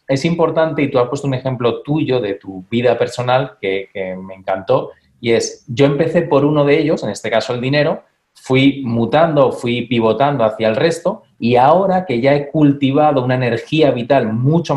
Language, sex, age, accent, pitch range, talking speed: Spanish, male, 30-49, Spanish, 115-145 Hz, 190 wpm